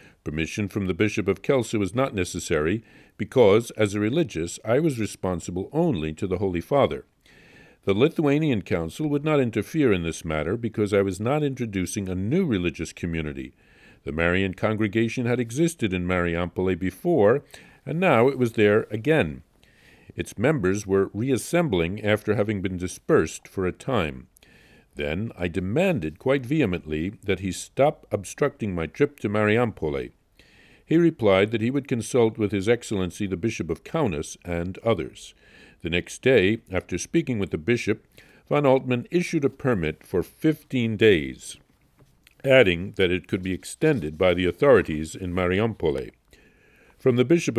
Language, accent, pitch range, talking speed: English, American, 90-125 Hz, 155 wpm